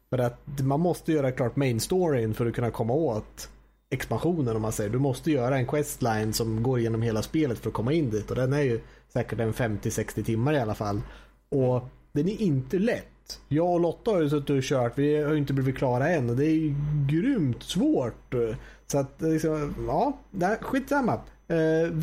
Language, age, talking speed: Swedish, 30-49, 205 wpm